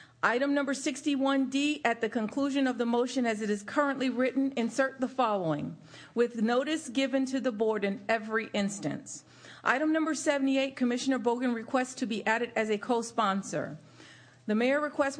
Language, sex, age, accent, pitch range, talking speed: English, female, 40-59, American, 215-265 Hz, 160 wpm